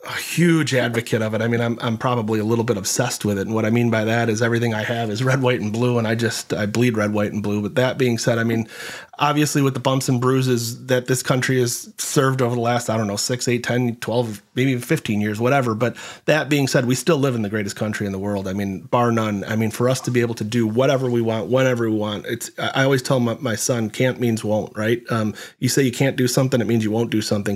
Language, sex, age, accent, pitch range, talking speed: English, male, 30-49, American, 110-125 Hz, 280 wpm